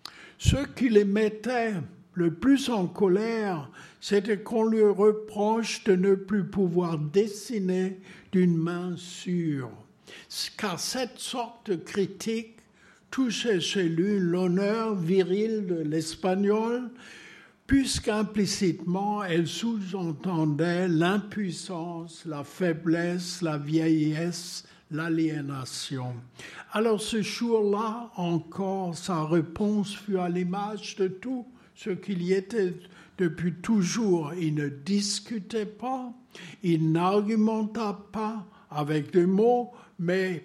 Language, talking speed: French, 100 wpm